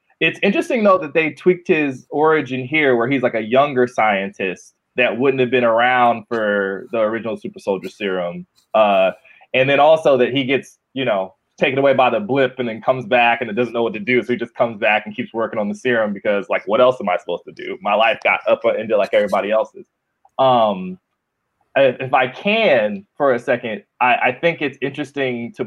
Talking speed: 215 wpm